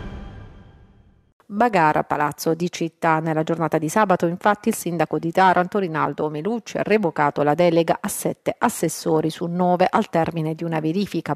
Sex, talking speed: female, 155 wpm